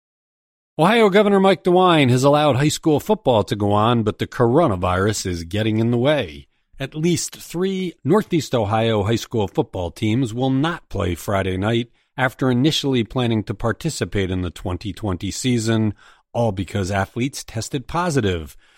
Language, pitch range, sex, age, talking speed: English, 105-145 Hz, male, 40-59, 155 wpm